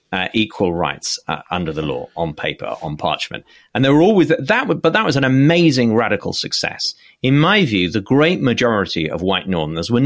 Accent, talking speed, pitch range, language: British, 195 wpm, 100-145 Hz, English